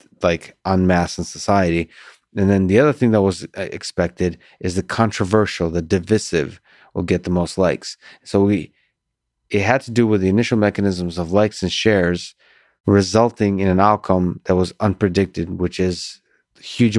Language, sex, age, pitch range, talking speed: English, male, 30-49, 90-105 Hz, 165 wpm